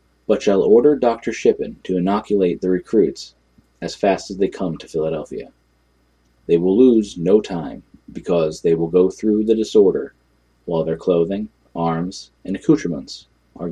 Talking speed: 155 wpm